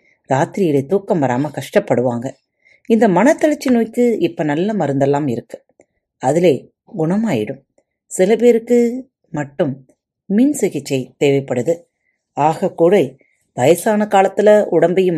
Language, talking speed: Tamil, 90 wpm